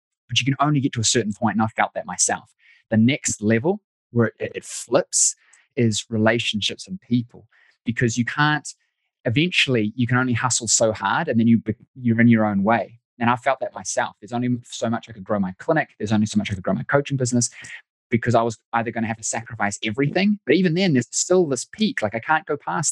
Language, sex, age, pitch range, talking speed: English, male, 20-39, 110-140 Hz, 235 wpm